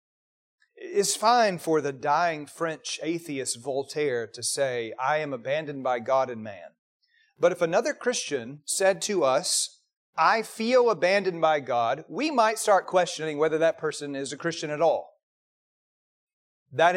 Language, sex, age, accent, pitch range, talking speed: English, male, 30-49, American, 150-240 Hz, 150 wpm